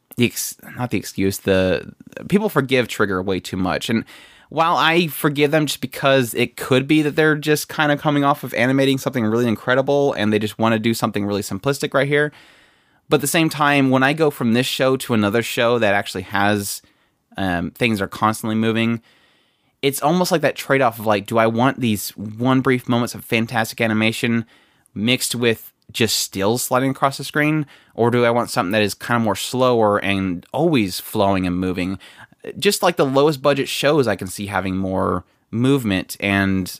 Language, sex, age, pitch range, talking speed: English, male, 20-39, 95-135 Hz, 195 wpm